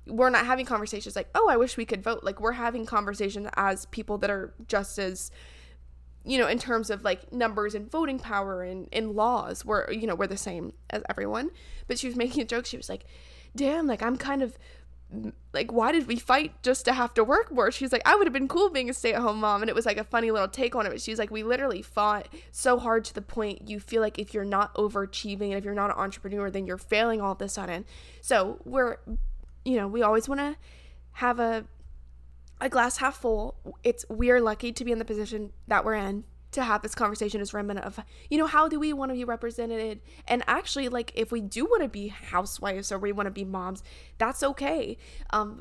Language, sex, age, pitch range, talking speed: English, female, 10-29, 200-240 Hz, 240 wpm